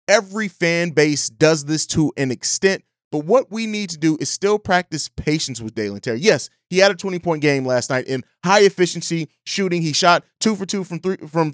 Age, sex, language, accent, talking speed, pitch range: 30-49, male, English, American, 200 wpm, 145-190 Hz